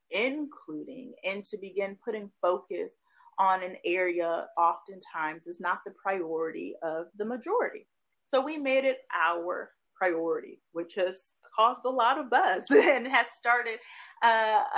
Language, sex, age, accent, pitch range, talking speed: English, female, 30-49, American, 170-235 Hz, 140 wpm